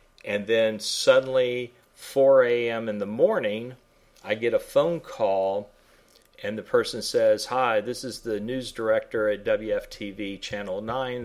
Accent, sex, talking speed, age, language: American, male, 145 wpm, 40-59, English